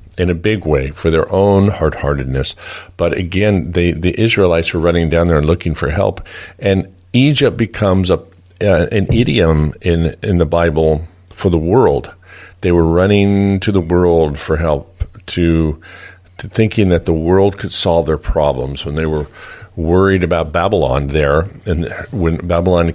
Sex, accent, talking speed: male, American, 165 wpm